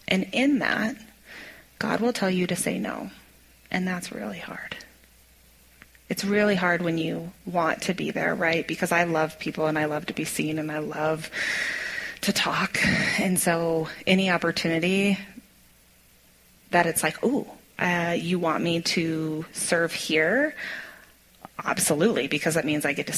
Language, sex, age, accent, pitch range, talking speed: English, female, 30-49, American, 160-200 Hz, 160 wpm